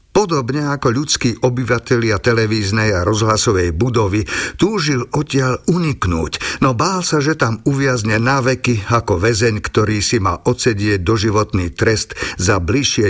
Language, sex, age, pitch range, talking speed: Slovak, male, 50-69, 105-145 Hz, 130 wpm